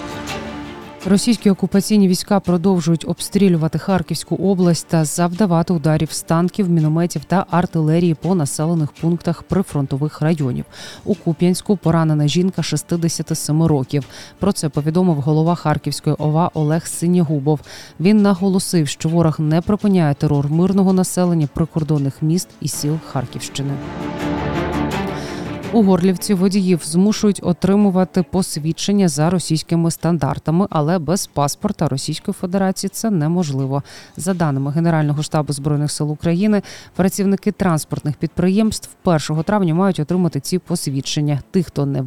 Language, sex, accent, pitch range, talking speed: Ukrainian, female, native, 150-185 Hz, 115 wpm